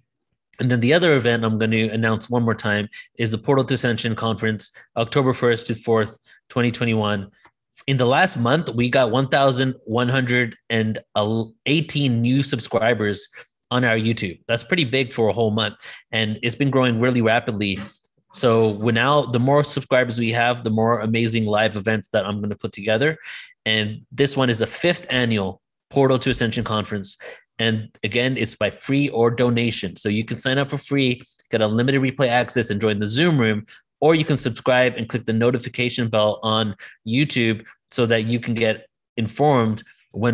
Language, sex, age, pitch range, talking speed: English, male, 20-39, 110-130 Hz, 175 wpm